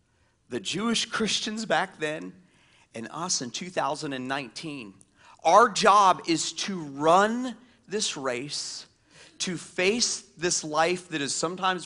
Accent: American